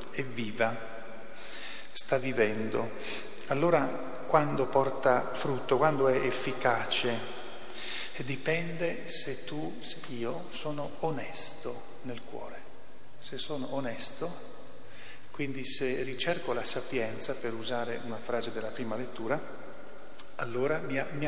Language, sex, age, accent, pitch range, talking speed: Italian, male, 40-59, native, 115-135 Hz, 105 wpm